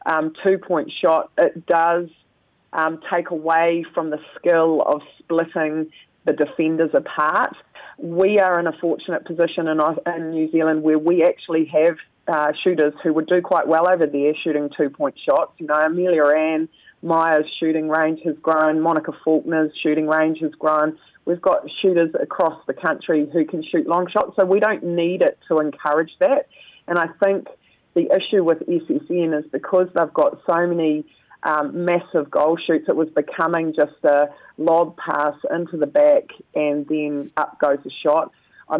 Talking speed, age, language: 170 wpm, 30-49, English